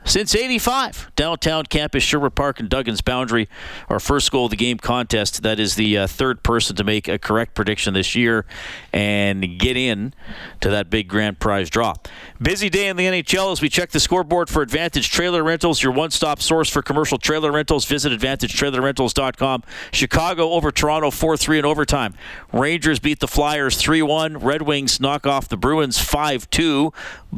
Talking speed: 175 wpm